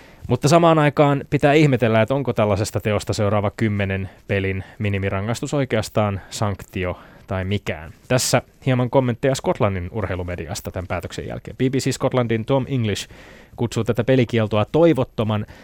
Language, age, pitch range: Finnish, 20-39, 100-125 Hz